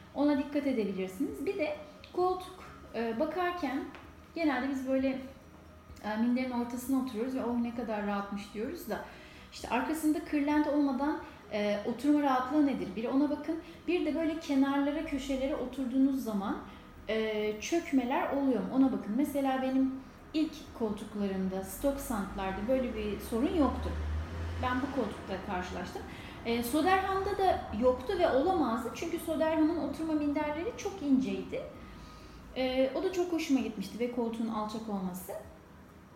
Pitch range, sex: 230-295 Hz, female